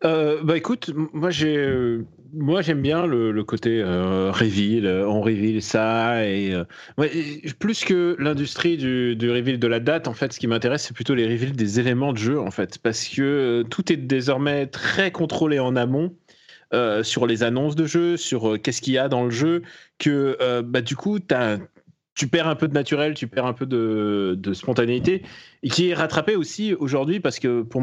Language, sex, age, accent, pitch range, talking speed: French, male, 30-49, French, 115-160 Hz, 210 wpm